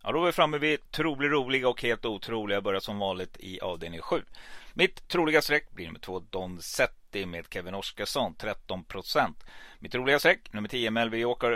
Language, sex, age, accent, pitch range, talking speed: Swedish, male, 30-49, native, 105-130 Hz, 185 wpm